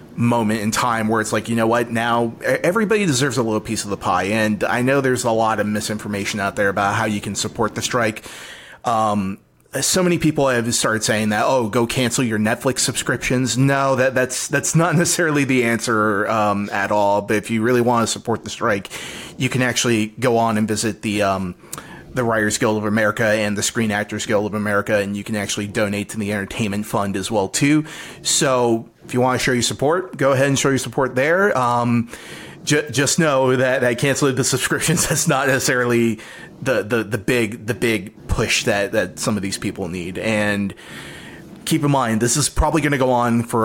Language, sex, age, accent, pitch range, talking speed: English, male, 30-49, American, 105-130 Hz, 210 wpm